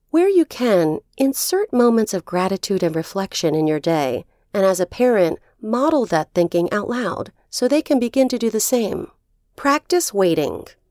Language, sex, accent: English, female, American